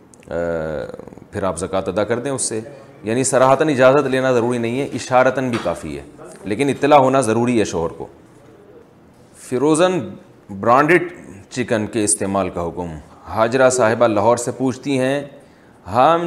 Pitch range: 100-130 Hz